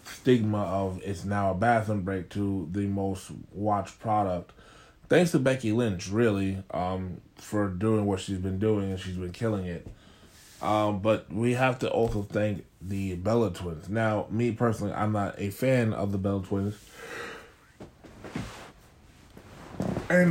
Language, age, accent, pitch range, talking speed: English, 20-39, American, 95-110 Hz, 150 wpm